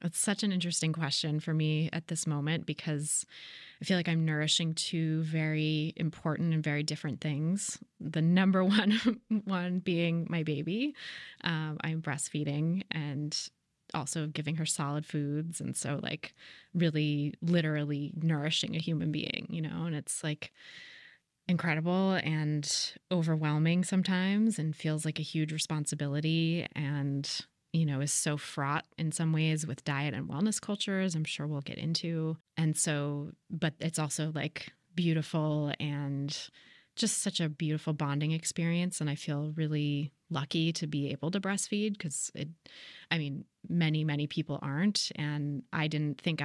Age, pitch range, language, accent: 20-39, 150-175 Hz, English, American